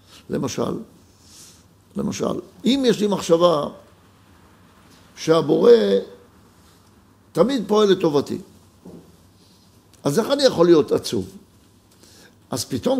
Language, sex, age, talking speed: Hebrew, male, 60-79, 85 wpm